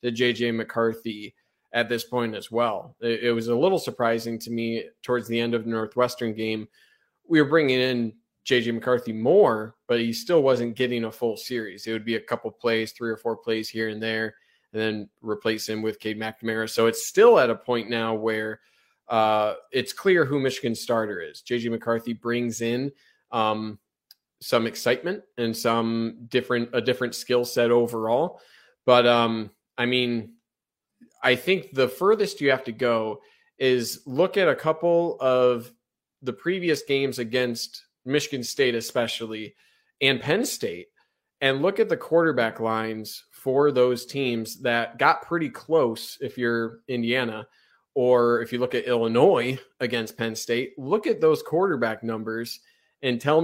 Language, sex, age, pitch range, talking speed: English, male, 20-39, 115-130 Hz, 165 wpm